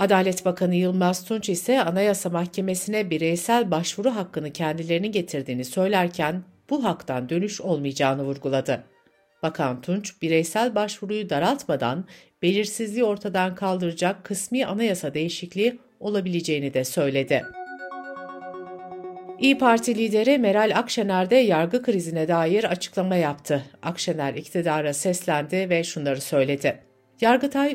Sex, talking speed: female, 110 wpm